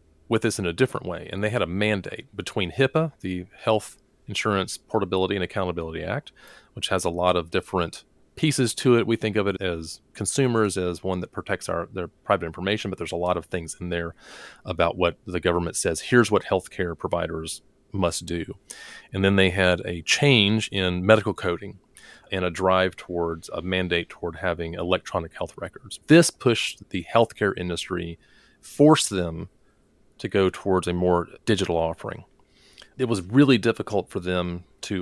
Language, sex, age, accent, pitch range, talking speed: English, male, 30-49, American, 85-105 Hz, 175 wpm